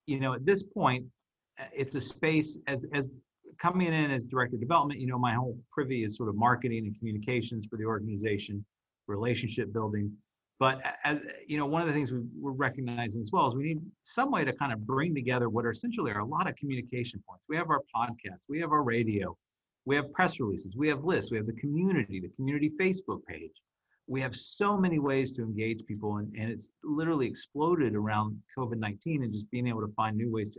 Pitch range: 110-145 Hz